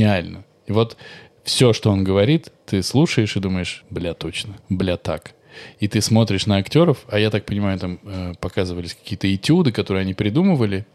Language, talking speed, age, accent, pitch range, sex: Russian, 170 wpm, 20-39, native, 95-125 Hz, male